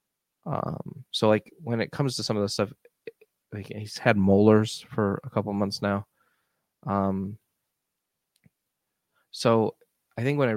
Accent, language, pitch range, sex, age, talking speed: American, English, 100-110 Hz, male, 20-39, 155 wpm